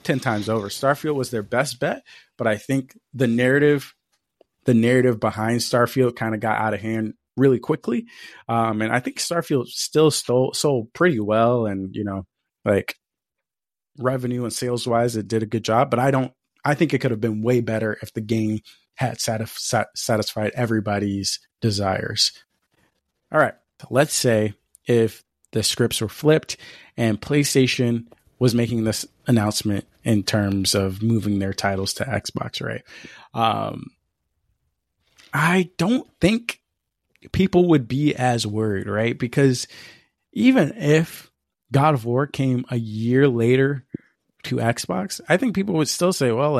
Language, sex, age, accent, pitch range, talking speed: English, male, 20-39, American, 110-140 Hz, 155 wpm